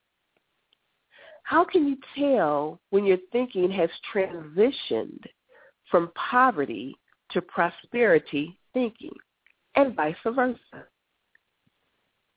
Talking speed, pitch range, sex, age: 80 wpm, 180-255 Hz, female, 50-69